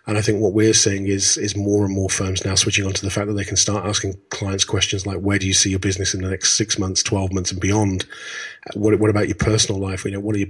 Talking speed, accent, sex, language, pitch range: 295 wpm, British, male, English, 100-110 Hz